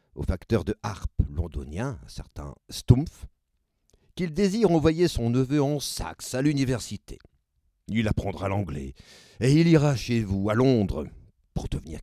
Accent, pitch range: French, 80-130 Hz